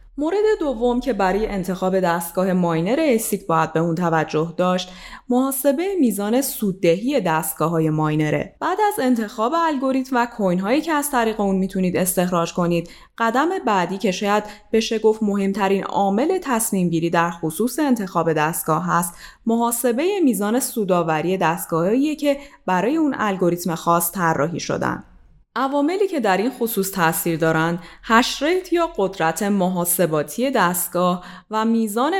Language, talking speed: Persian, 130 wpm